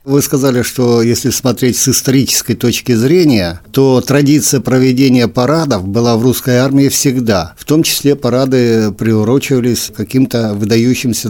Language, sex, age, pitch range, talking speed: Russian, male, 60-79, 110-135 Hz, 140 wpm